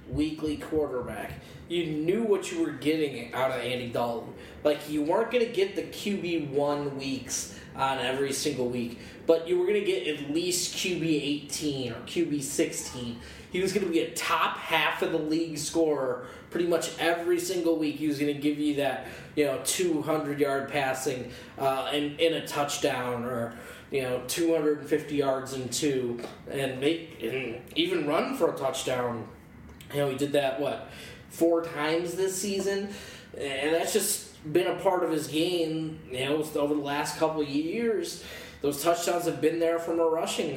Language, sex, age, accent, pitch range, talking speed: English, male, 20-39, American, 140-170 Hz, 190 wpm